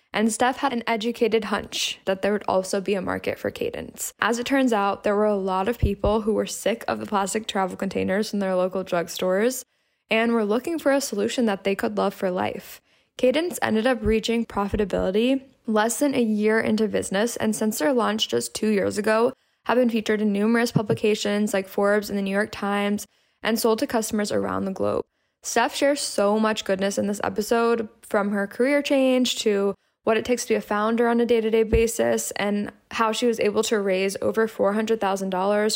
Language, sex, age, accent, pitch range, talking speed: English, female, 10-29, American, 195-230 Hz, 205 wpm